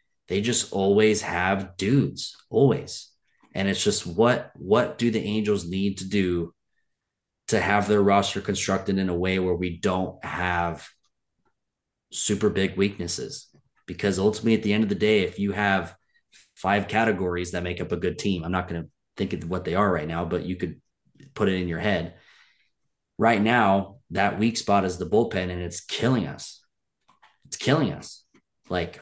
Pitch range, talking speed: 90-105 Hz, 180 wpm